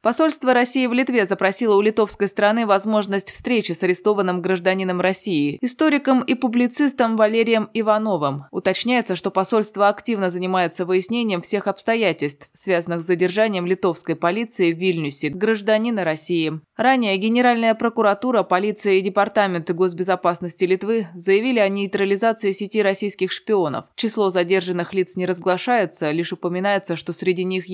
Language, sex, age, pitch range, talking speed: Russian, female, 20-39, 180-220 Hz, 130 wpm